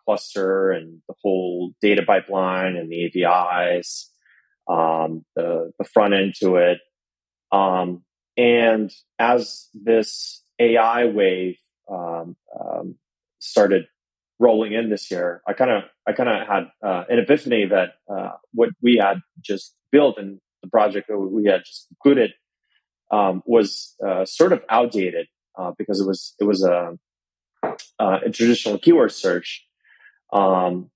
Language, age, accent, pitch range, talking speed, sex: English, 30-49, American, 90-110 Hz, 140 wpm, male